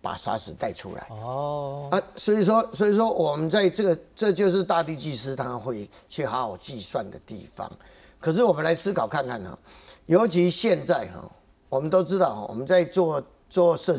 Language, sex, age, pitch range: Chinese, male, 50-69, 135-185 Hz